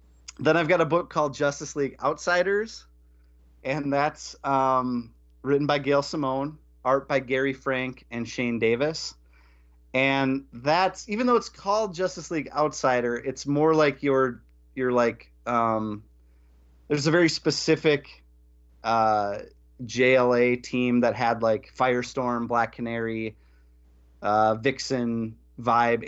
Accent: American